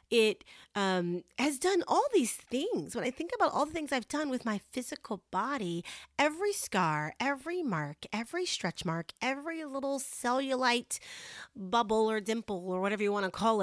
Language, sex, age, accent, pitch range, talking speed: English, female, 30-49, American, 190-260 Hz, 170 wpm